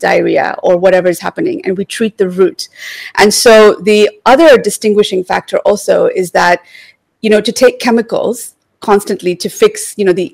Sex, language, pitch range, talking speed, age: female, English, 180-215 Hz, 175 wpm, 30-49